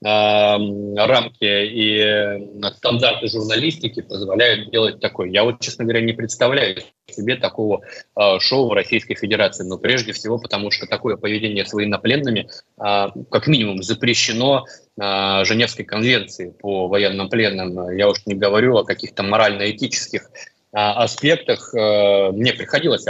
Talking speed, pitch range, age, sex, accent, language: 120 wpm, 100-115 Hz, 20-39, male, native, Russian